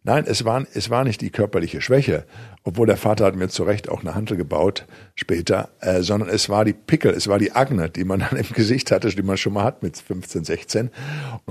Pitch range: 100-130 Hz